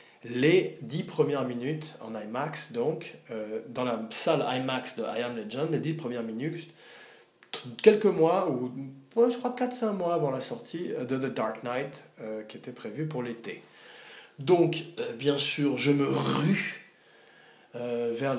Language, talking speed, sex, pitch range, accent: French, 165 wpm, male, 120-160 Hz, French